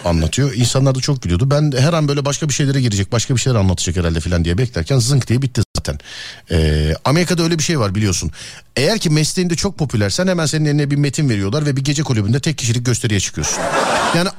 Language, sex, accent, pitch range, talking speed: Turkish, male, native, 115-175 Hz, 220 wpm